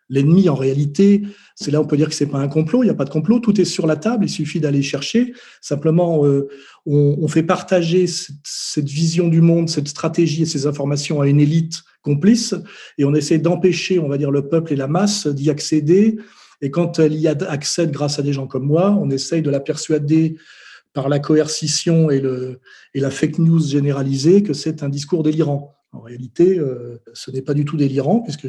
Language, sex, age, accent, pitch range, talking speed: French, male, 40-59, French, 145-170 Hz, 215 wpm